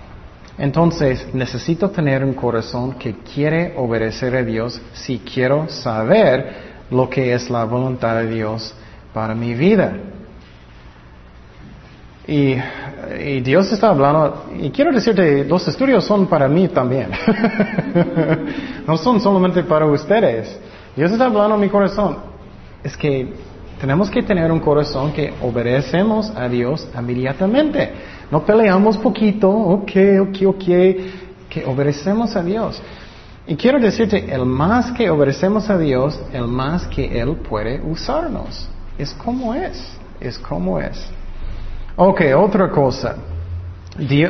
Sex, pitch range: male, 125-185 Hz